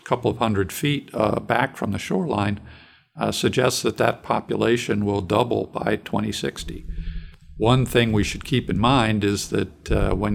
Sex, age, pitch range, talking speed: male, 50-69, 95-115 Hz, 170 wpm